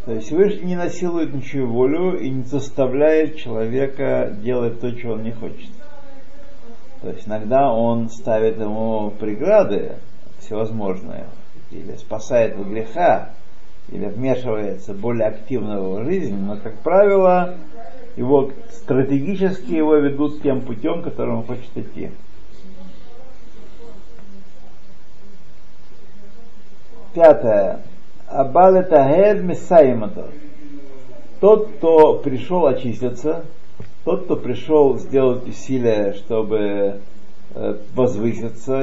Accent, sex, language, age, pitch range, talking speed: native, male, Russian, 50-69, 110-150 Hz, 95 wpm